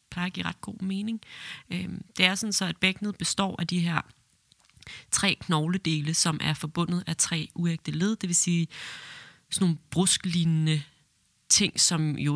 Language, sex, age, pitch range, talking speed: Danish, female, 30-49, 160-185 Hz, 160 wpm